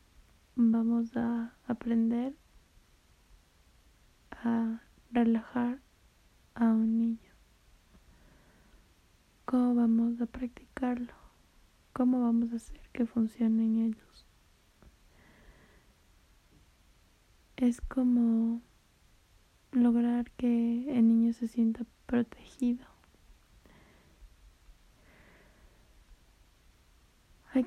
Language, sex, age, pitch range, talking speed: Spanish, female, 20-39, 220-240 Hz, 65 wpm